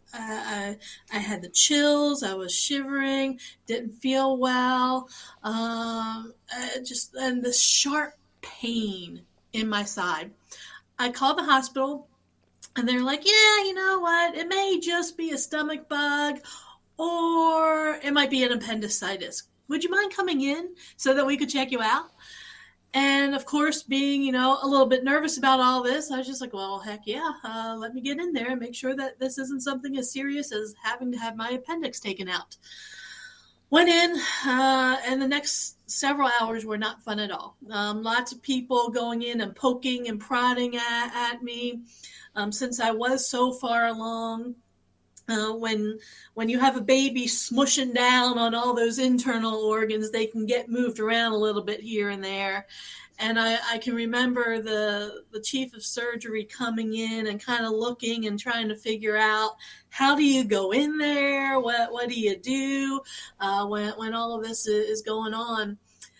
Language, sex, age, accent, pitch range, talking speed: English, female, 30-49, American, 225-275 Hz, 180 wpm